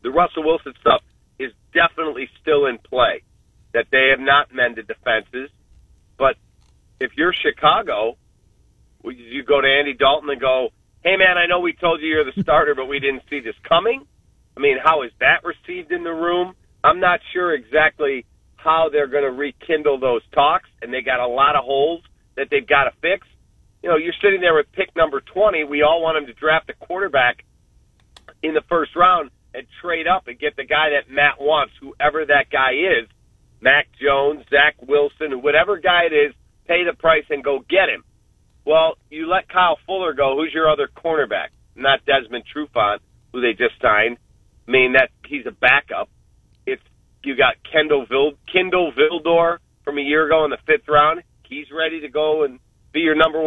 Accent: American